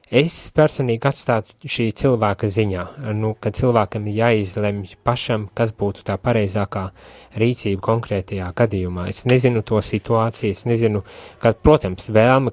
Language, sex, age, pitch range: English, male, 20-39, 100-120 Hz